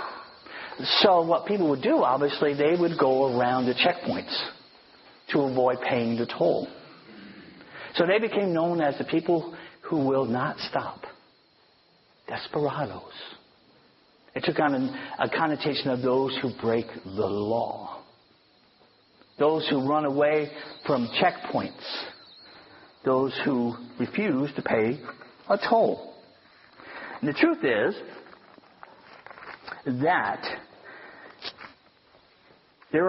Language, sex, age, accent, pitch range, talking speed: English, male, 50-69, American, 115-165 Hz, 105 wpm